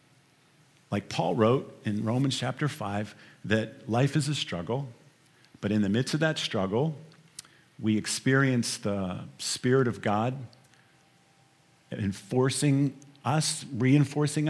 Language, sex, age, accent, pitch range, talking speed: English, male, 50-69, American, 130-165 Hz, 115 wpm